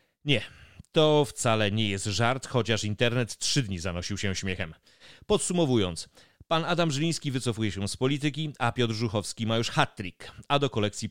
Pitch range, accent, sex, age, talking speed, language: 100-130 Hz, native, male, 30-49, 160 wpm, Polish